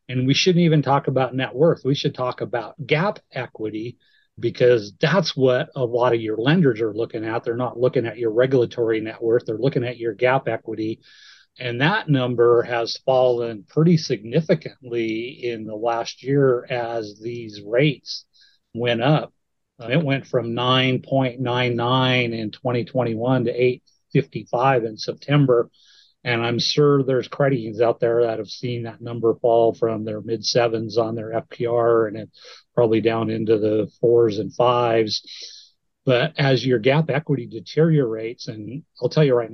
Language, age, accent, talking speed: English, 40-59, American, 160 wpm